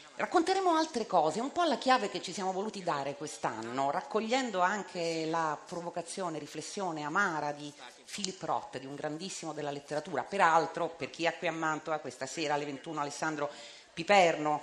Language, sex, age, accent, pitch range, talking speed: Italian, female, 40-59, native, 150-205 Hz, 165 wpm